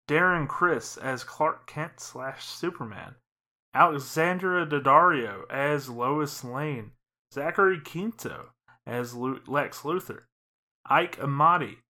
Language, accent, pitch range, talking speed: English, American, 120-145 Hz, 95 wpm